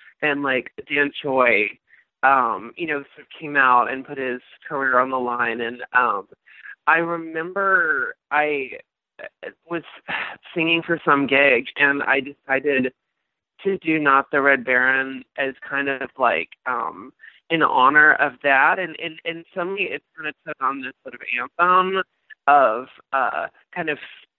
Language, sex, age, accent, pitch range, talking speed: English, male, 20-39, American, 130-165 Hz, 155 wpm